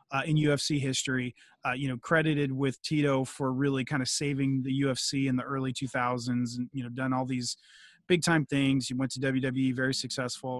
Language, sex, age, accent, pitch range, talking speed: English, male, 30-49, American, 135-170 Hz, 205 wpm